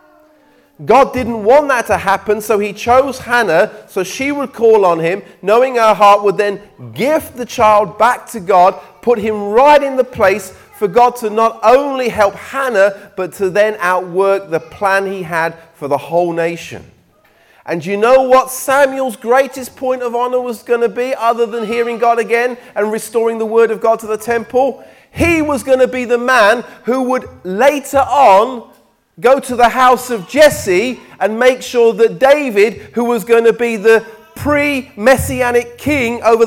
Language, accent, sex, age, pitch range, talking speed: English, British, male, 40-59, 205-260 Hz, 180 wpm